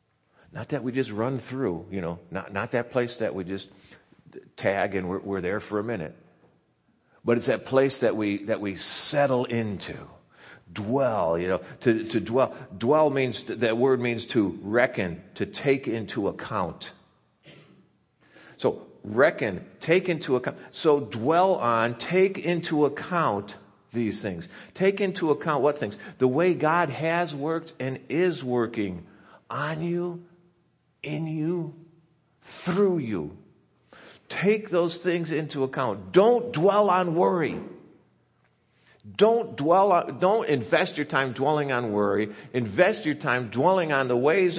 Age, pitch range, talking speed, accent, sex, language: 50-69, 115-165 Hz, 145 wpm, American, male, English